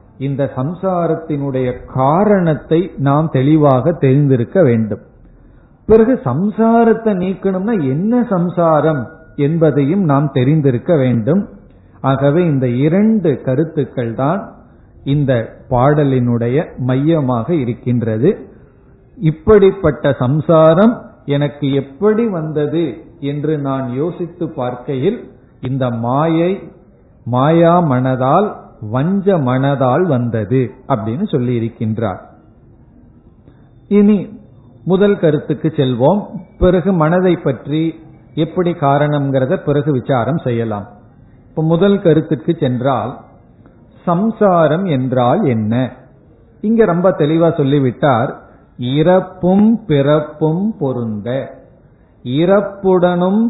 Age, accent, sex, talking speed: 50-69, native, male, 70 wpm